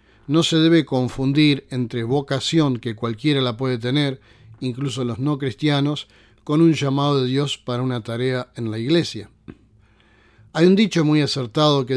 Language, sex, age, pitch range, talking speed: Spanish, male, 40-59, 115-150 Hz, 160 wpm